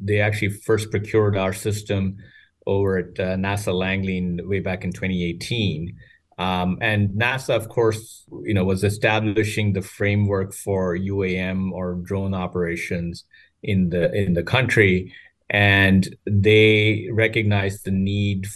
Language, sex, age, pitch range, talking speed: English, male, 30-49, 90-105 Hz, 135 wpm